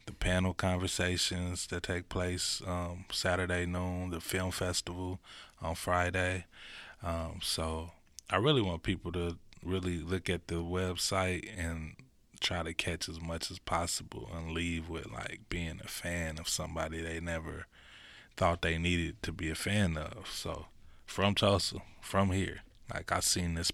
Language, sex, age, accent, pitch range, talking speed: English, male, 20-39, American, 80-90 Hz, 155 wpm